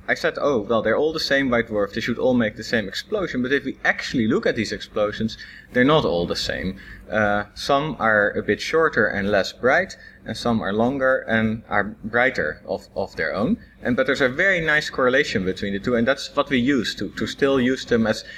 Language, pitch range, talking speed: English, 100-140 Hz, 230 wpm